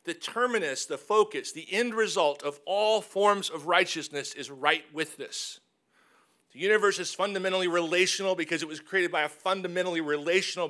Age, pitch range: 40-59, 155-190 Hz